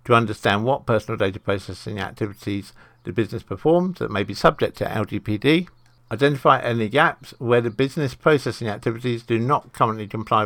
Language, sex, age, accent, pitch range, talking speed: English, male, 60-79, British, 105-125 Hz, 160 wpm